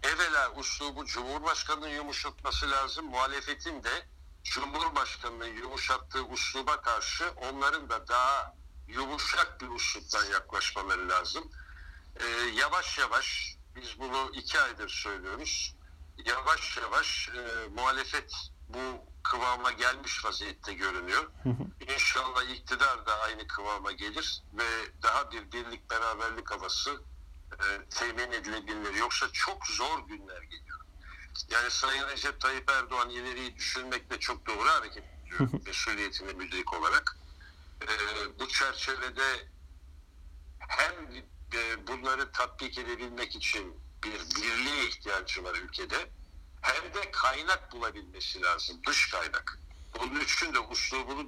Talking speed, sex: 105 wpm, male